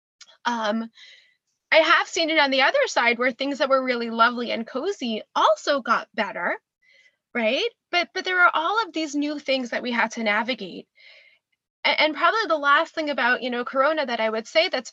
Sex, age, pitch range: female, 20-39, 245-325 Hz